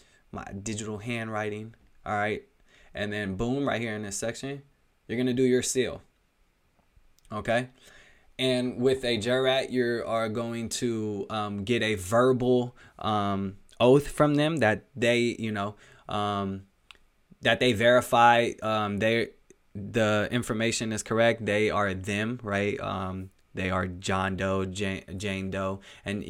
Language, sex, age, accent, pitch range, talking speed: English, male, 20-39, American, 95-115 Hz, 140 wpm